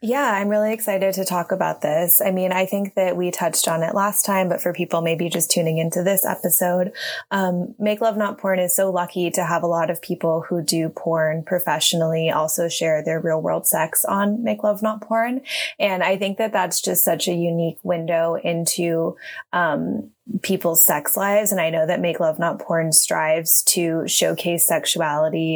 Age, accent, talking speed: 20-39, American, 195 wpm